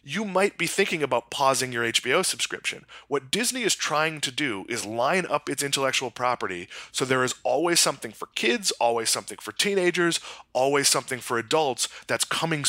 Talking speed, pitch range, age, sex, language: 180 wpm, 125-160 Hz, 20-39, male, English